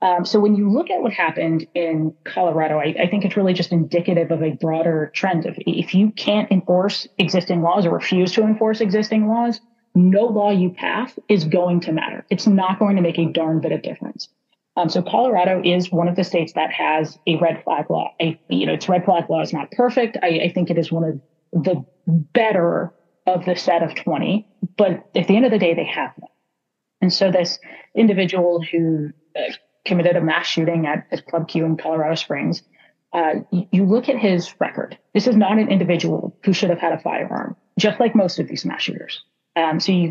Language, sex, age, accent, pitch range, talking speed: English, female, 30-49, American, 170-210 Hz, 215 wpm